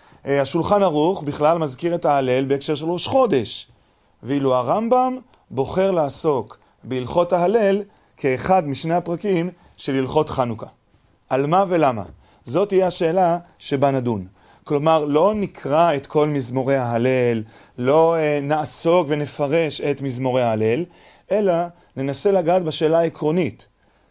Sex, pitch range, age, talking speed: male, 130-180 Hz, 30-49, 115 wpm